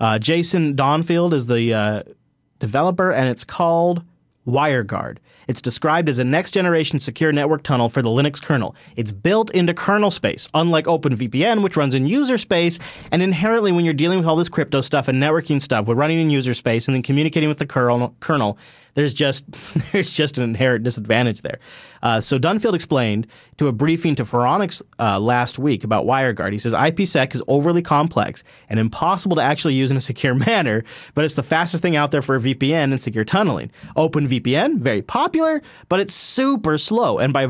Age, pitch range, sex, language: 30-49, 125-165 Hz, male, English